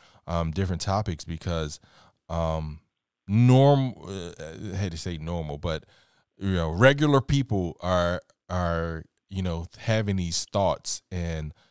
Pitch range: 85-105 Hz